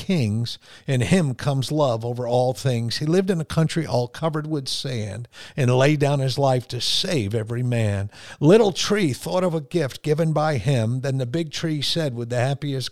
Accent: American